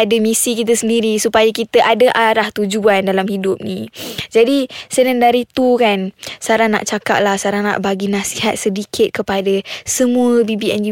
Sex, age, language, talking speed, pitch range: female, 20-39, Malay, 160 wpm, 210-255 Hz